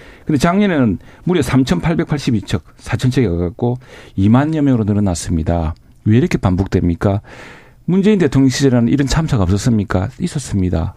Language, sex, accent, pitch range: Korean, male, native, 100-140 Hz